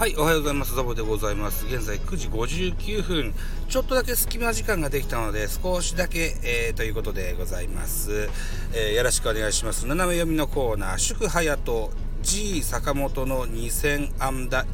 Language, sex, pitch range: Japanese, male, 115-165 Hz